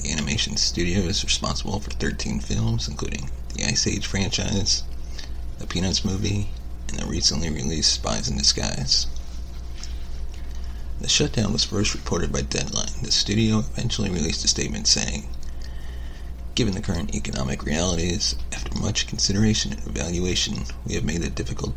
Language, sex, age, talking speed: English, male, 30-49, 145 wpm